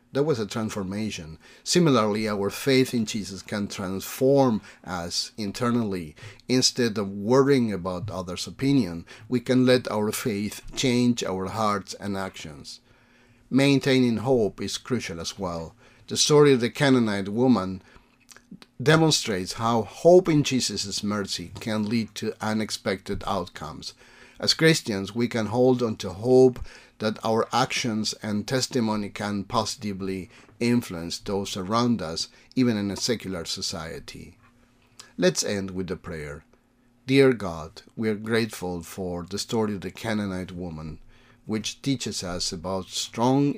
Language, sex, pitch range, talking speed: English, male, 95-125 Hz, 135 wpm